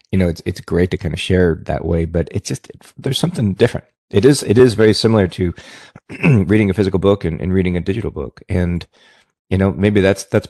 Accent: American